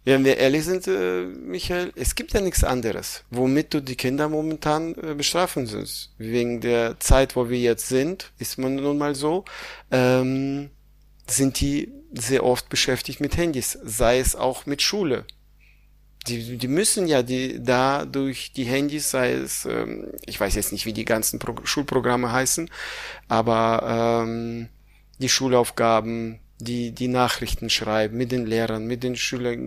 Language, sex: German, male